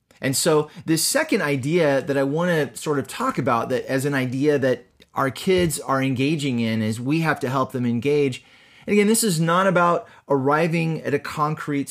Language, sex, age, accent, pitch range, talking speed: English, male, 30-49, American, 115-150 Hz, 200 wpm